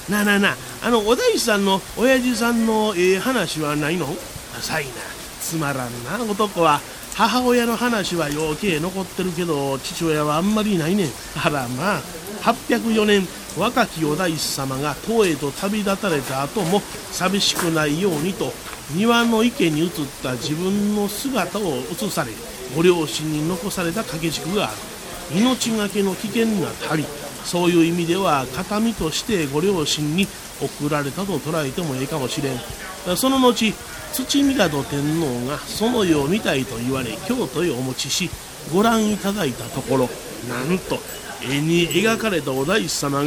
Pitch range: 150-215 Hz